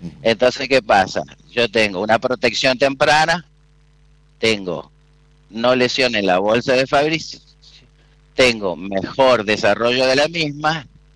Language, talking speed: Spanish, 120 wpm